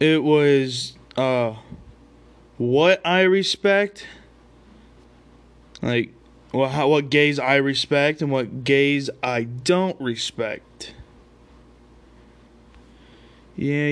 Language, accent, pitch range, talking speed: English, American, 110-160 Hz, 85 wpm